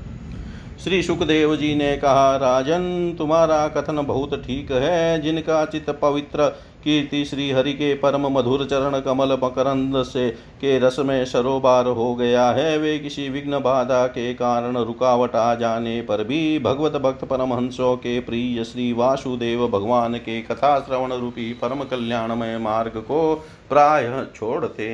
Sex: male